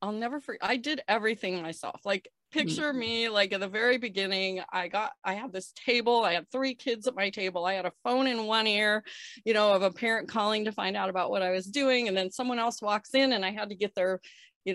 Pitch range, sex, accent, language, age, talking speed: 190-255 Hz, female, American, English, 30-49, 250 wpm